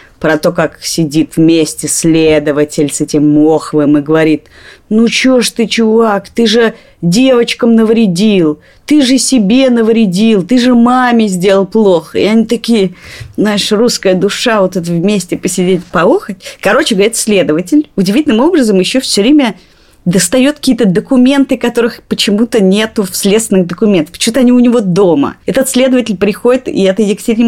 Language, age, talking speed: Russian, 30-49, 150 wpm